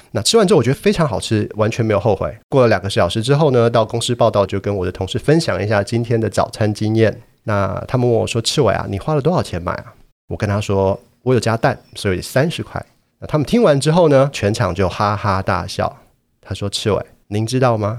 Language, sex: Chinese, male